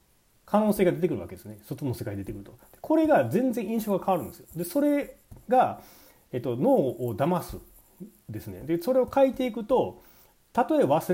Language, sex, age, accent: Japanese, male, 40-59, native